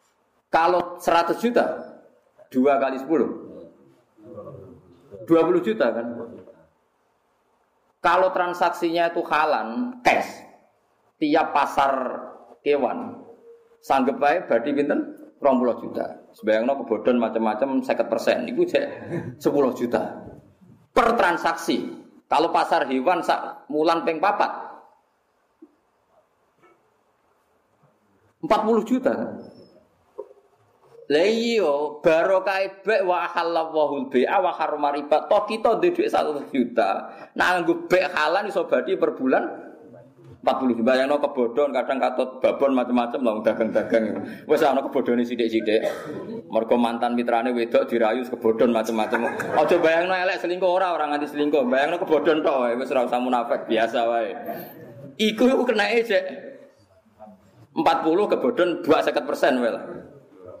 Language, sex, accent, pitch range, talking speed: Indonesian, male, native, 120-195 Hz, 75 wpm